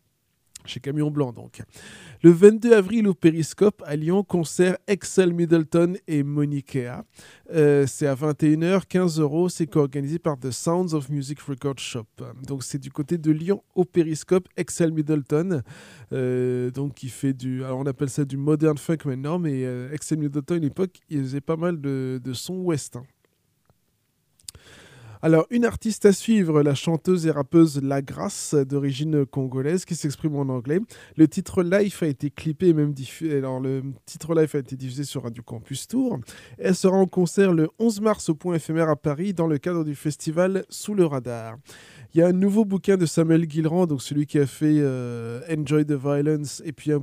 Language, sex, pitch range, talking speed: French, male, 135-170 Hz, 190 wpm